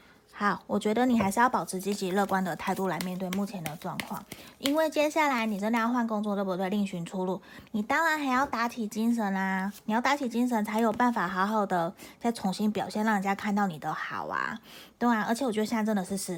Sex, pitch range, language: female, 185-225 Hz, Chinese